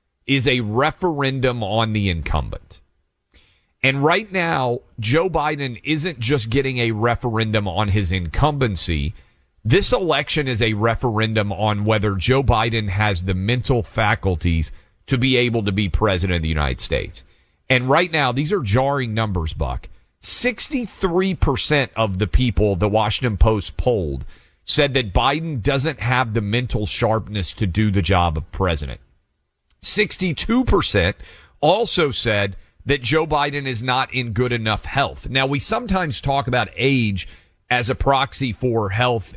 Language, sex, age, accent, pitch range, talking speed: English, male, 40-59, American, 100-135 Hz, 145 wpm